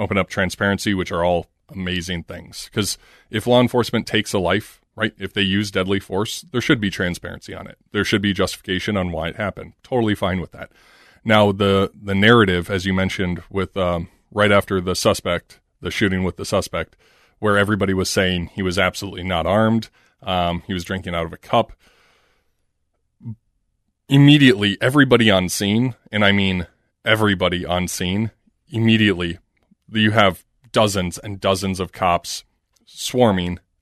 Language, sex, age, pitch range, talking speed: English, male, 30-49, 90-110 Hz, 165 wpm